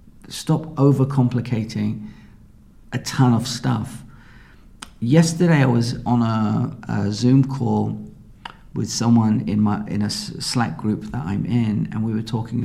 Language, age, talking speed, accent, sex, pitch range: English, 50-69, 140 wpm, British, male, 105-135 Hz